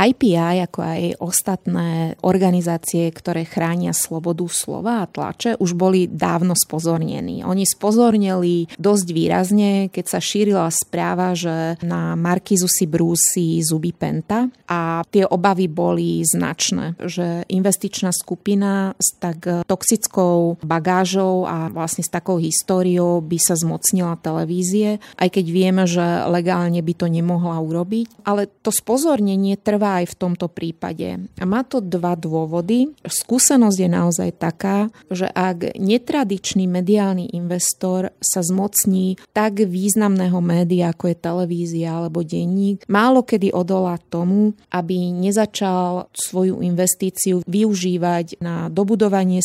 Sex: female